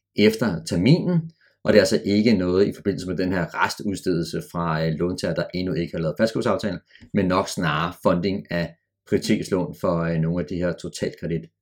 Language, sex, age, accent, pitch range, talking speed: Danish, male, 30-49, native, 95-130 Hz, 185 wpm